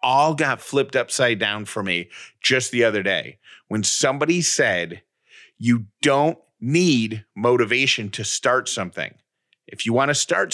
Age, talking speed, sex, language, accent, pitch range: 40-59, 150 wpm, male, English, American, 115-150 Hz